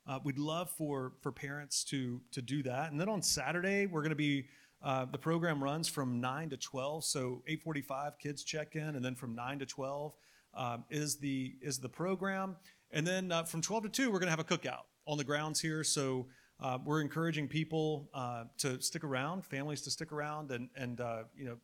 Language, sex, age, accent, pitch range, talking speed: English, male, 40-59, American, 130-165 Hz, 220 wpm